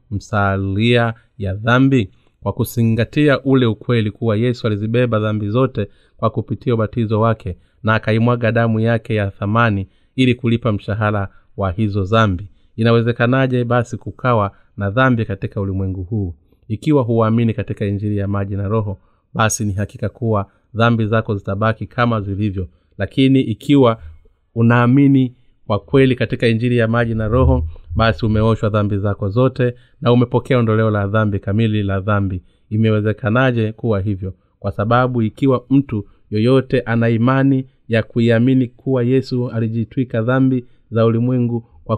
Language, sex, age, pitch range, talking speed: Swahili, male, 30-49, 105-120 Hz, 135 wpm